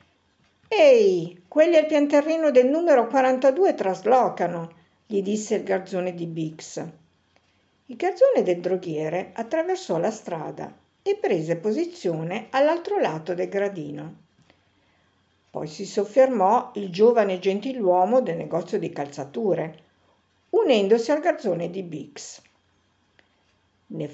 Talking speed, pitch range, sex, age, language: 110 wpm, 180-245 Hz, female, 50-69, Italian